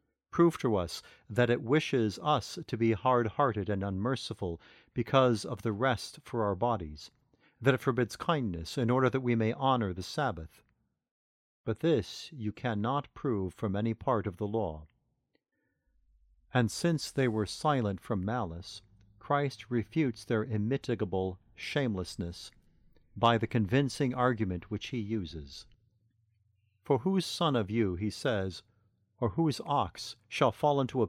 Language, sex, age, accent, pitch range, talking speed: English, male, 50-69, American, 105-130 Hz, 145 wpm